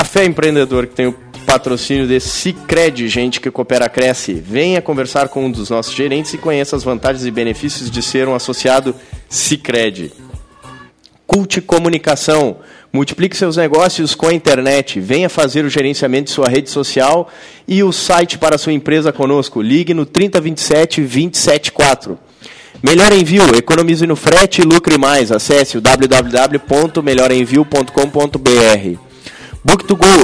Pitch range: 130-170 Hz